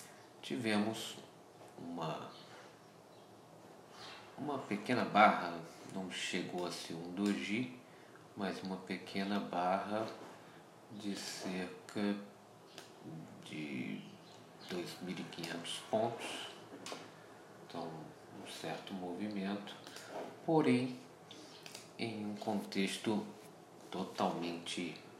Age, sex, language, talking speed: 50-69, male, Portuguese, 65 wpm